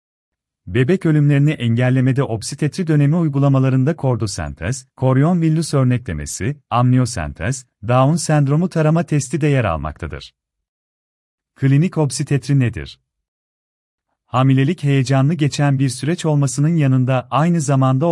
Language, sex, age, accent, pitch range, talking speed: Turkish, male, 40-59, native, 115-145 Hz, 100 wpm